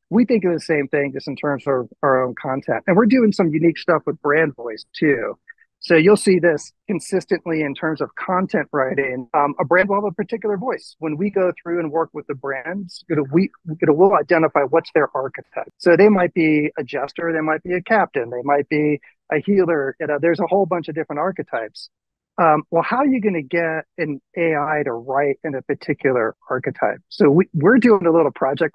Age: 40-59